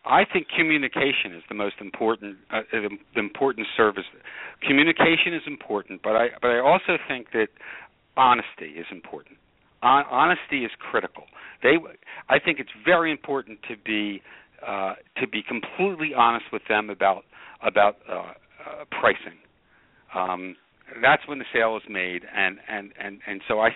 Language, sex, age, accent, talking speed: English, male, 60-79, American, 155 wpm